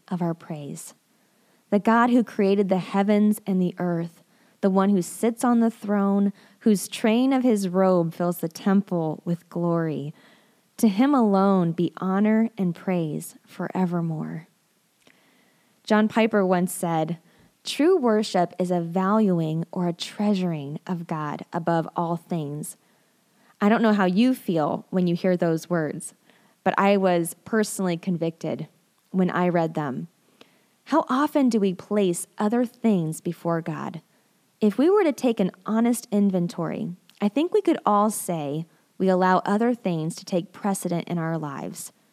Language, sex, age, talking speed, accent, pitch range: English, female, 20-39, 150 wpm, American, 175-225 Hz